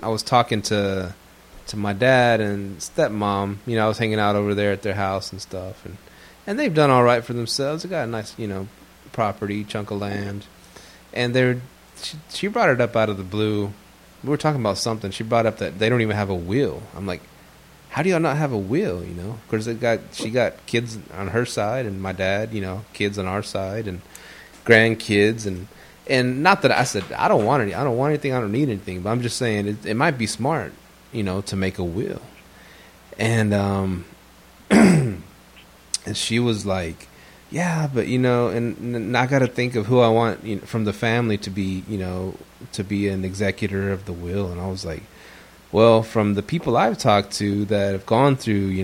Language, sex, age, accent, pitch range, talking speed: English, male, 20-39, American, 95-115 Hz, 220 wpm